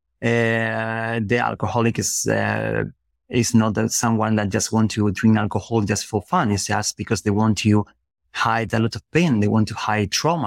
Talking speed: 195 wpm